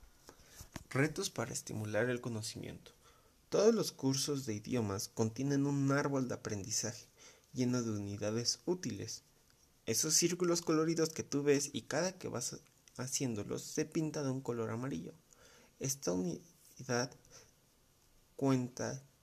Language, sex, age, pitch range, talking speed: English, male, 30-49, 110-140 Hz, 120 wpm